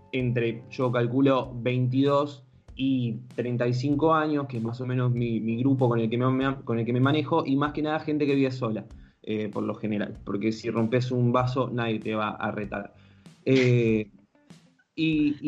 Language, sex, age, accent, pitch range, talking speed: Spanish, male, 20-39, Argentinian, 115-145 Hz, 170 wpm